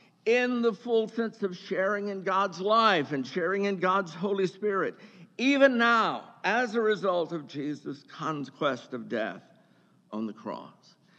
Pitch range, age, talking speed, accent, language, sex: 155-205 Hz, 60-79, 150 wpm, American, English, male